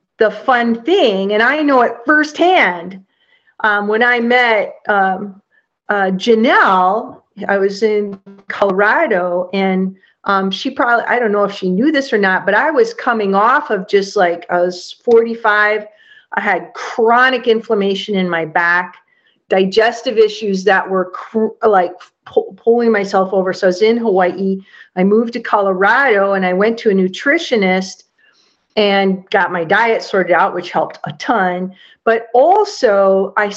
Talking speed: 155 wpm